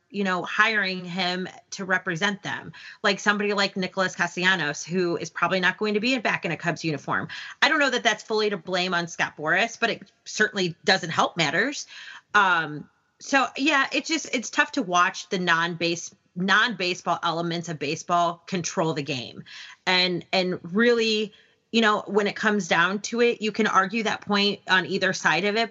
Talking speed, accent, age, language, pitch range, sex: 190 wpm, American, 30-49, English, 175-210 Hz, female